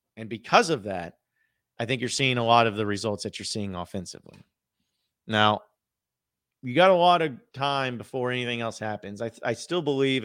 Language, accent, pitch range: English, American, 105-135 Hz